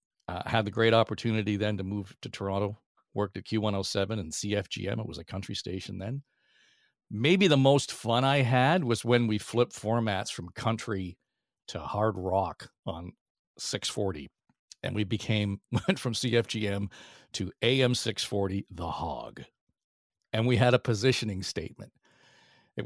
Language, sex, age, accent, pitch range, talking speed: English, male, 50-69, American, 100-120 Hz, 165 wpm